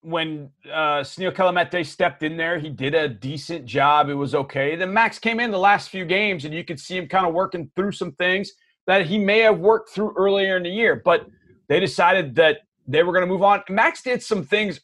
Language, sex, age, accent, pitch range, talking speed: English, male, 30-49, American, 155-210 Hz, 235 wpm